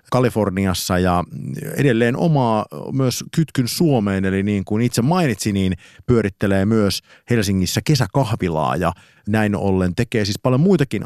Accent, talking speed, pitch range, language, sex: native, 130 wpm, 90-115 Hz, Finnish, male